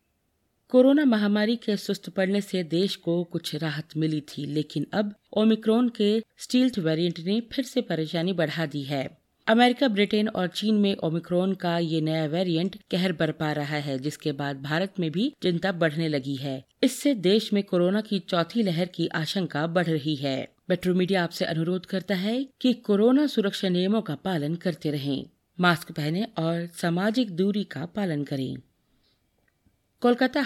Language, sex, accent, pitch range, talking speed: Hindi, female, native, 160-210 Hz, 165 wpm